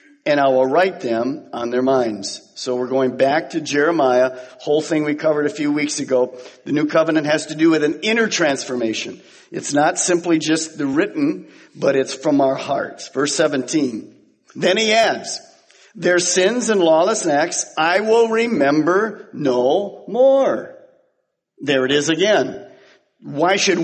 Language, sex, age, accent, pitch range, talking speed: English, male, 50-69, American, 135-205 Hz, 160 wpm